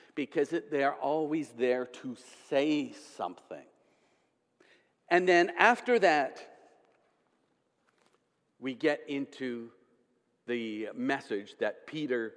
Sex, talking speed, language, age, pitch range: male, 95 wpm, English, 50-69, 155-240 Hz